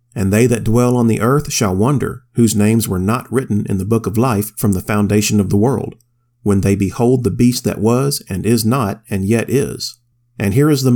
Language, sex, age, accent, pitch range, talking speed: English, male, 40-59, American, 105-125 Hz, 230 wpm